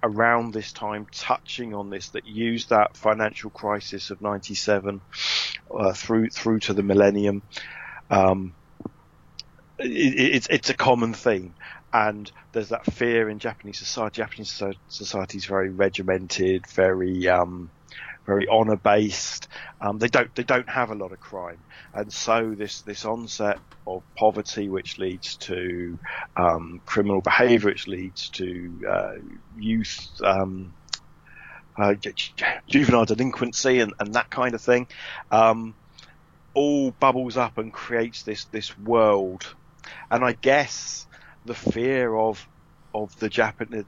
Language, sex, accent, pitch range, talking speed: English, male, British, 95-115 Hz, 135 wpm